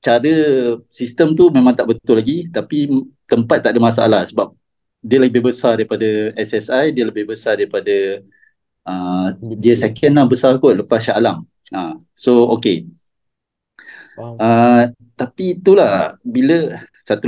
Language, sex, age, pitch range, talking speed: Malay, male, 30-49, 115-150 Hz, 135 wpm